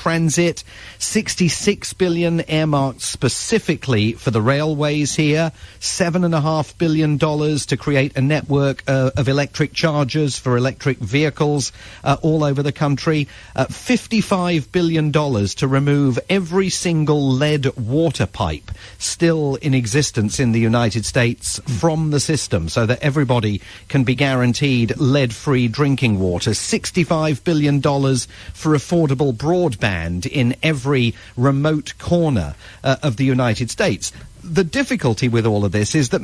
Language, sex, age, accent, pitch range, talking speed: English, male, 40-59, British, 120-155 Hz, 140 wpm